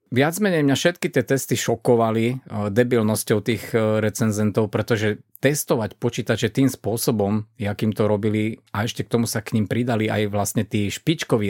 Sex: male